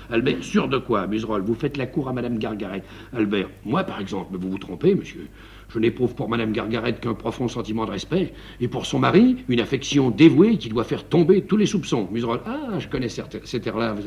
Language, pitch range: French, 105-170 Hz